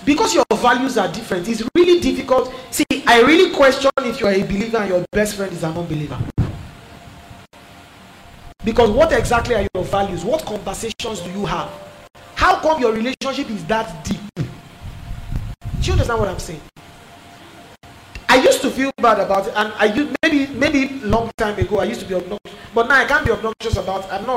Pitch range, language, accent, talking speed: 195-265 Hz, English, Nigerian, 190 wpm